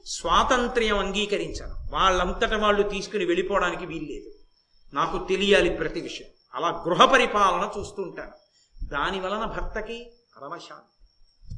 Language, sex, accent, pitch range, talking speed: Telugu, male, native, 185-255 Hz, 95 wpm